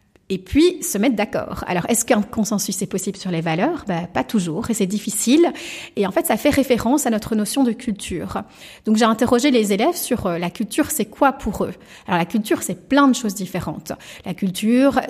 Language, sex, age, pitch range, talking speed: French, female, 30-49, 185-245 Hz, 210 wpm